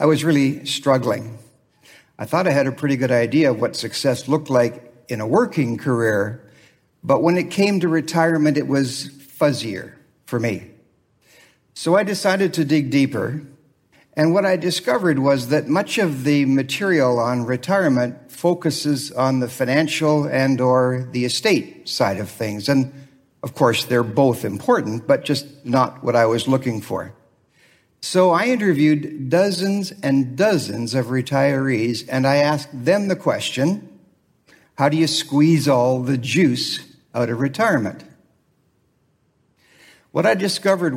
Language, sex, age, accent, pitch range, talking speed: English, male, 60-79, American, 125-160 Hz, 150 wpm